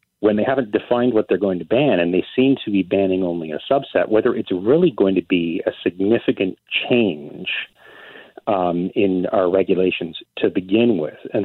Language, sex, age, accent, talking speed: English, male, 40-59, American, 185 wpm